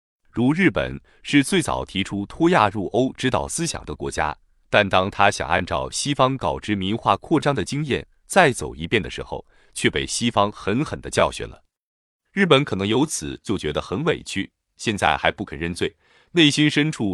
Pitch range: 95-145 Hz